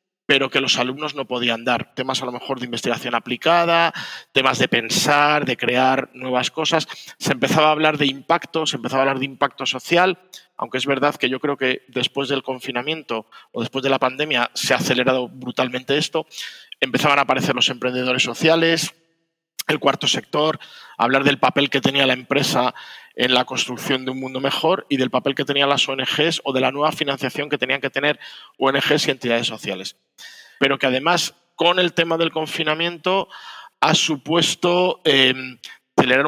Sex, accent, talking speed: male, Spanish, 180 wpm